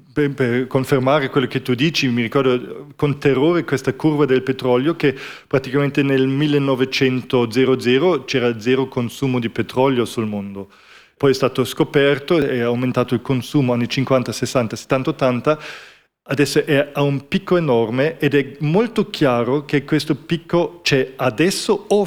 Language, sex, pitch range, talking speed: Italian, male, 130-155 Hz, 150 wpm